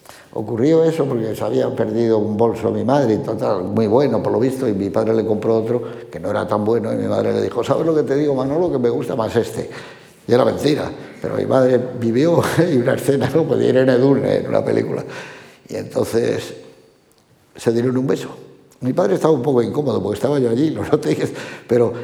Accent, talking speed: Spanish, 210 wpm